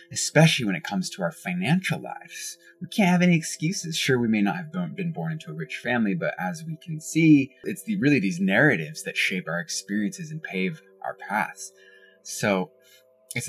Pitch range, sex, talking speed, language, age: 125-175 Hz, male, 190 wpm, English, 20-39